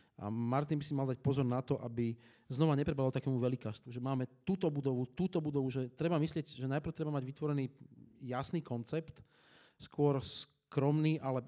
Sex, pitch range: male, 125-145 Hz